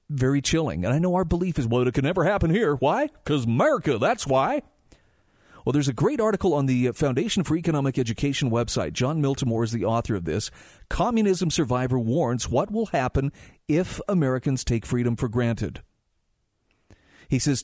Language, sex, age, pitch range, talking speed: English, male, 40-59, 120-160 Hz, 175 wpm